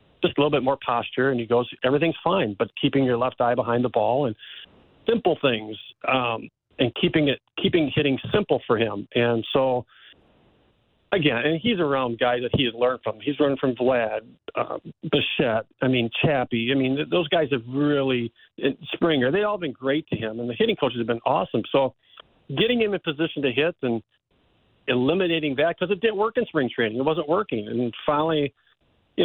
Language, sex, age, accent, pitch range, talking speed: English, male, 40-59, American, 120-150 Hz, 200 wpm